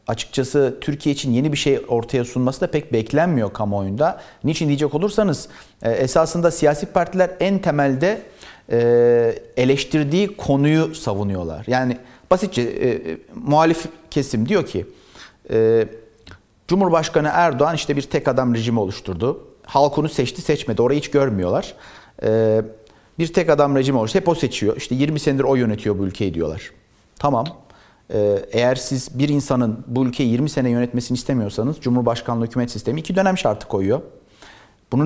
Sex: male